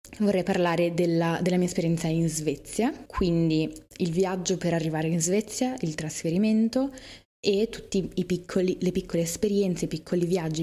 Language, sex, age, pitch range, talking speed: Italian, female, 20-39, 165-210 Hz, 140 wpm